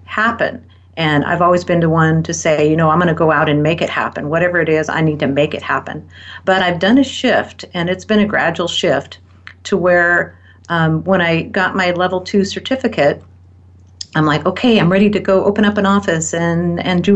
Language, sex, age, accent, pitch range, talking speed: English, female, 50-69, American, 150-180 Hz, 225 wpm